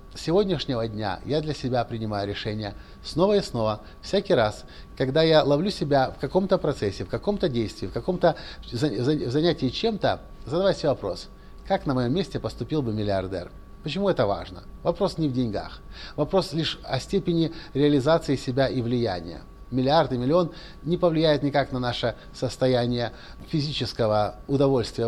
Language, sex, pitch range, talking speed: Russian, male, 110-150 Hz, 150 wpm